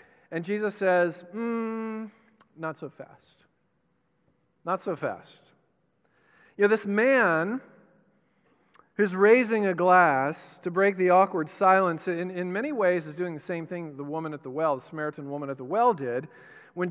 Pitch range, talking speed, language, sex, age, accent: 150-195 Hz, 160 wpm, English, male, 40-59, American